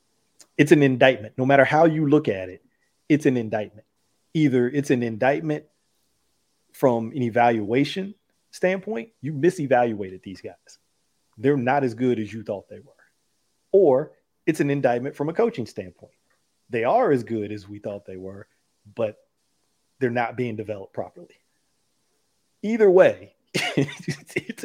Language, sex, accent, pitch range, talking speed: English, male, American, 115-150 Hz, 145 wpm